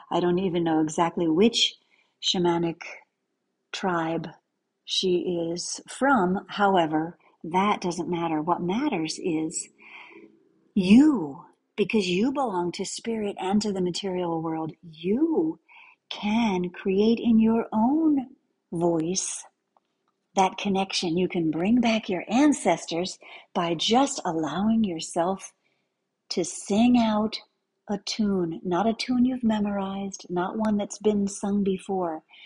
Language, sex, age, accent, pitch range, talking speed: English, female, 50-69, American, 175-240 Hz, 120 wpm